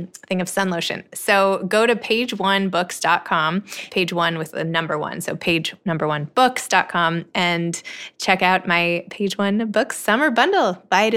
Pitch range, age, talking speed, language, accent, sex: 170-225 Hz, 20-39, 150 wpm, English, American, female